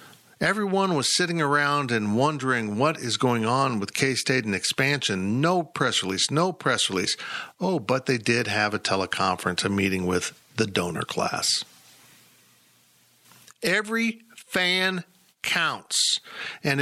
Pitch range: 115-160 Hz